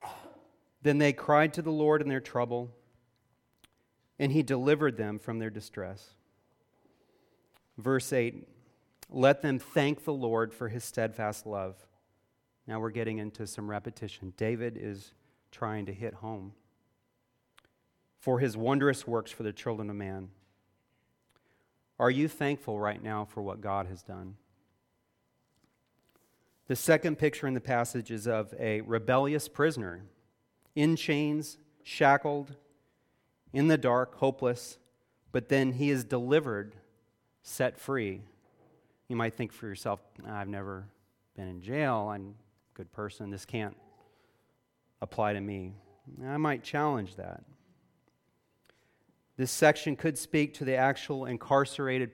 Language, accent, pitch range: English, American, 105-140 Hz